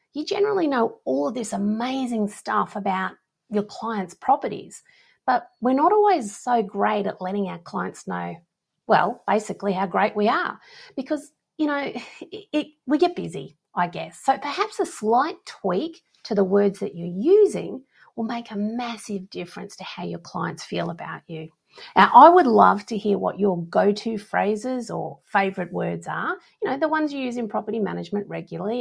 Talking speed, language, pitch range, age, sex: 180 wpm, English, 195-300 Hz, 40-59, female